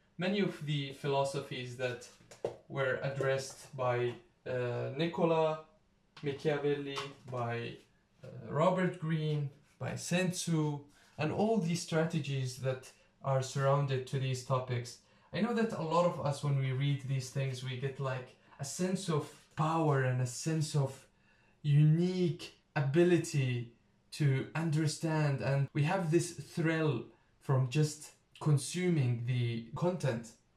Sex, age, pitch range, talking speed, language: male, 20-39, 130-170 Hz, 125 wpm, English